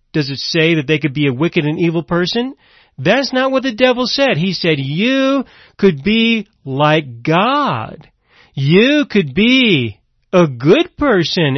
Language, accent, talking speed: English, American, 160 wpm